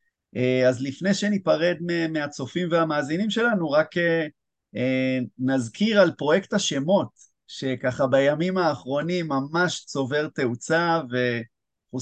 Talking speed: 90 wpm